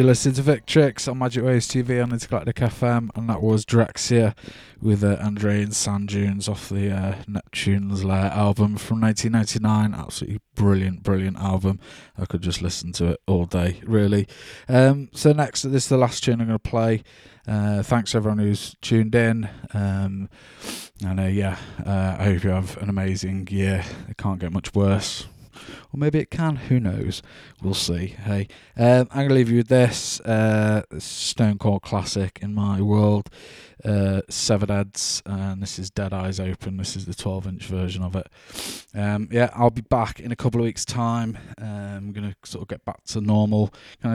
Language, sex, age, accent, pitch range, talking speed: English, male, 20-39, British, 95-115 Hz, 190 wpm